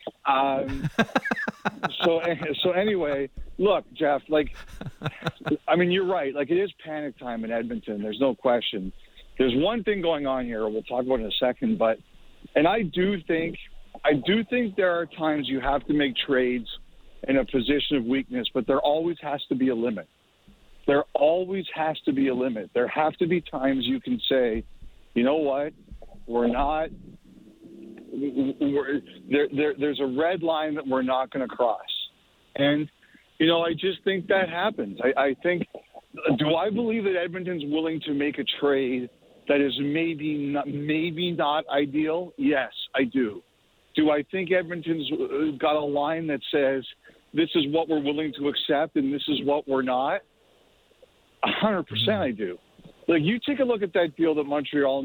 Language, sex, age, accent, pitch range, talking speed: English, male, 50-69, American, 135-175 Hz, 175 wpm